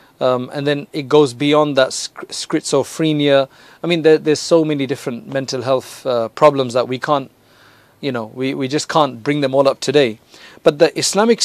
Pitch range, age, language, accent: 135-160 Hz, 40-59, English, South African